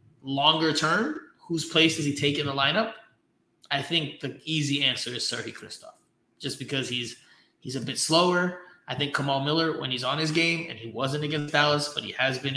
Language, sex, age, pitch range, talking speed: English, male, 20-39, 130-150 Hz, 205 wpm